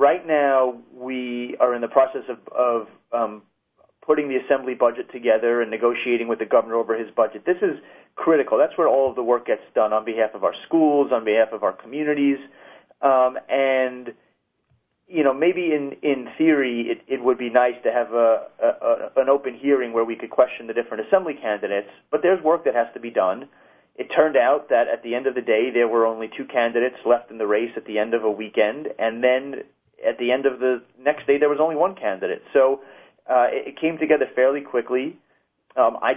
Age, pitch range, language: 30-49, 115-140 Hz, English